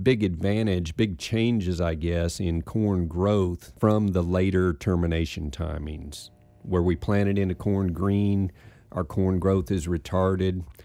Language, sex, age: English, male, 50-69